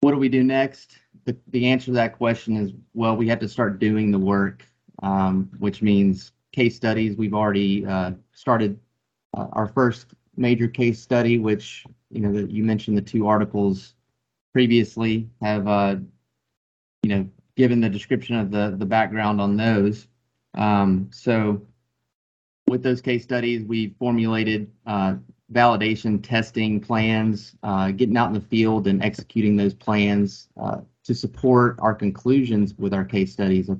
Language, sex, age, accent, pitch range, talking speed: English, male, 30-49, American, 100-115 Hz, 160 wpm